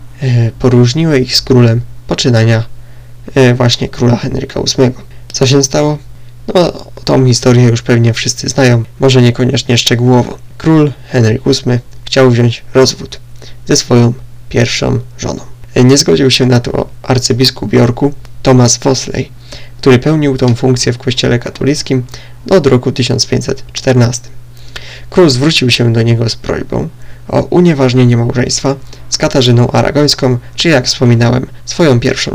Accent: native